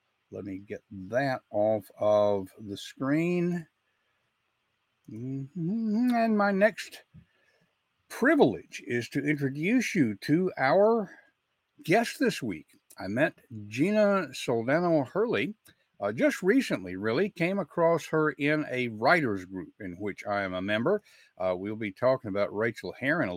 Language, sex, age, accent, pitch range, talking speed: English, male, 60-79, American, 110-155 Hz, 130 wpm